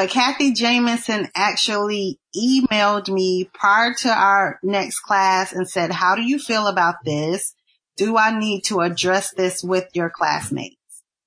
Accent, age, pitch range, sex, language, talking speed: American, 30-49, 180-235 Hz, female, English, 150 wpm